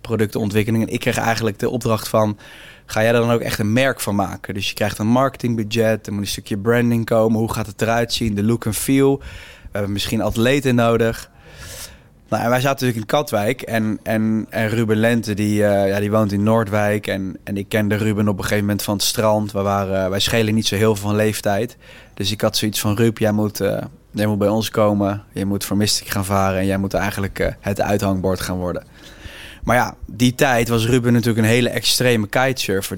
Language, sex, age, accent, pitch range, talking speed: Dutch, male, 20-39, Dutch, 100-115 Hz, 225 wpm